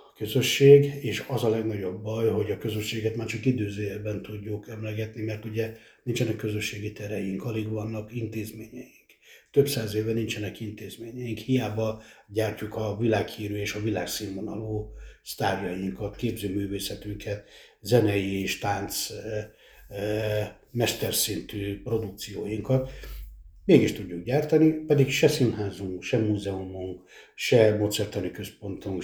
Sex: male